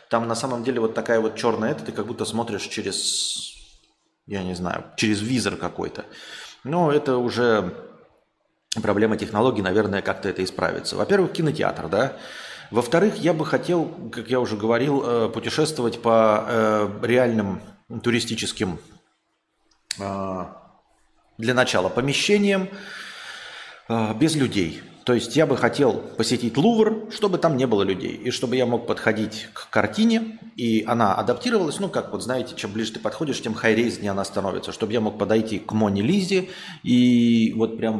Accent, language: native, Russian